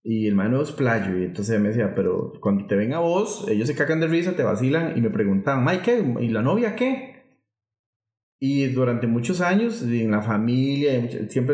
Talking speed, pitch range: 210 wpm, 115-160 Hz